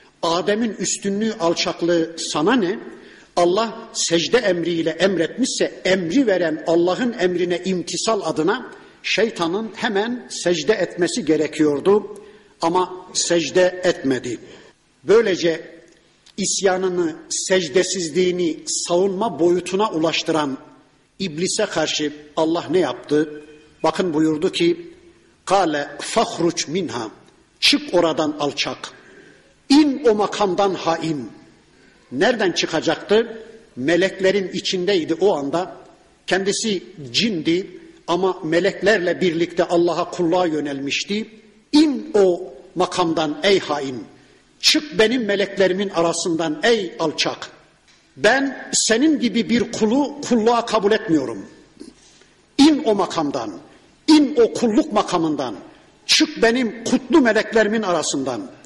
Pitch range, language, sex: 170-225 Hz, Turkish, male